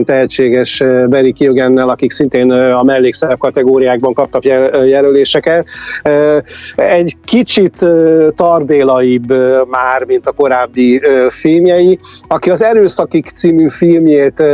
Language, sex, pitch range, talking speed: Hungarian, male, 125-145 Hz, 95 wpm